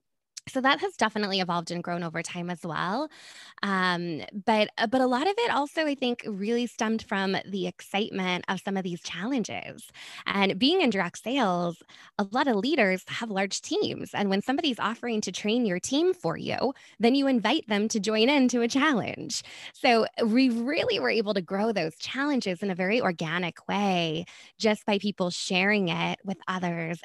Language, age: English, 20-39